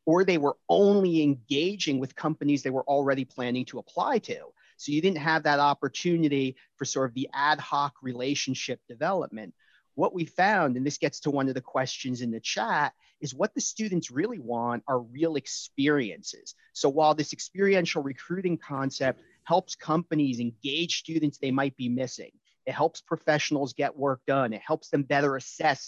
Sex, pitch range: male, 130-160 Hz